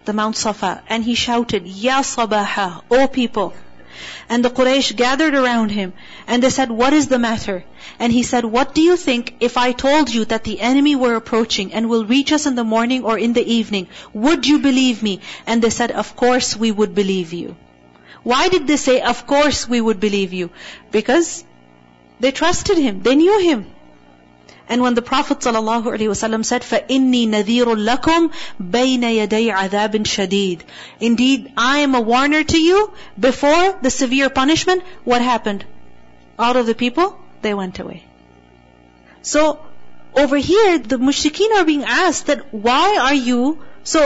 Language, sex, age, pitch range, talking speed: English, female, 40-59, 210-280 Hz, 160 wpm